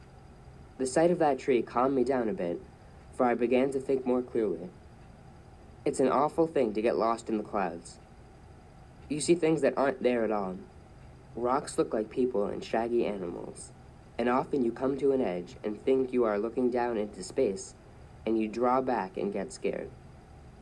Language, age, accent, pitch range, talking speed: English, 20-39, American, 105-135 Hz, 185 wpm